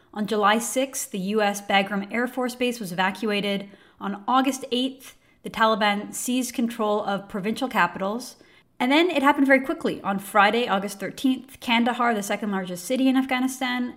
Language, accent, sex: English, American, female